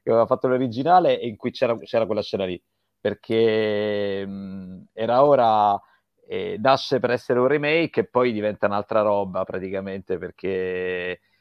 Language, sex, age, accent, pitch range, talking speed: Italian, male, 30-49, native, 100-120 Hz, 155 wpm